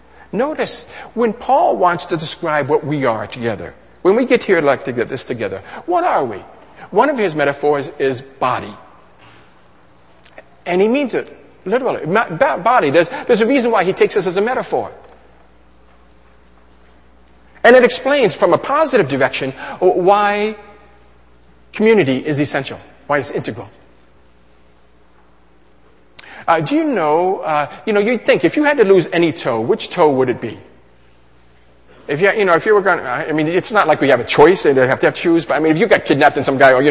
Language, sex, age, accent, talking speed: English, male, 50-69, American, 190 wpm